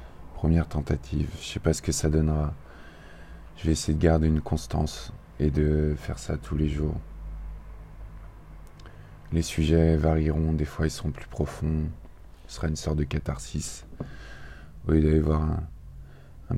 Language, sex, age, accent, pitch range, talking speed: French, male, 20-39, French, 75-80 Hz, 165 wpm